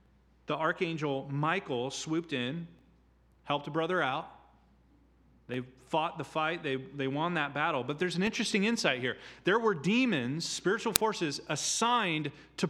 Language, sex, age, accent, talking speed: English, male, 30-49, American, 145 wpm